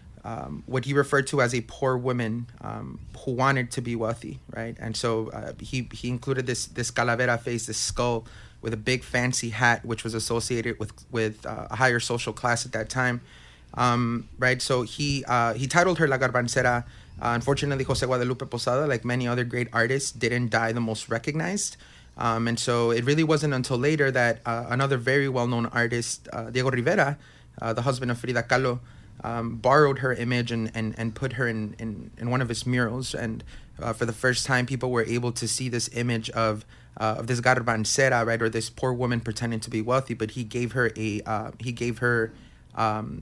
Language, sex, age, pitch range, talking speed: English, male, 30-49, 115-130 Hz, 205 wpm